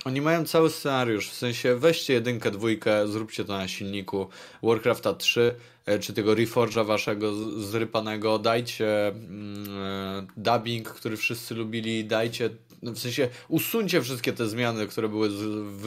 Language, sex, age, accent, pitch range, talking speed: Polish, male, 20-39, native, 100-120 Hz, 140 wpm